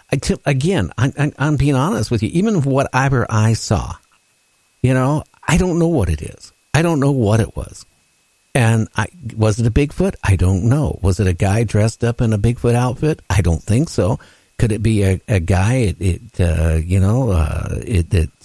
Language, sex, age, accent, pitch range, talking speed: English, male, 60-79, American, 100-135 Hz, 210 wpm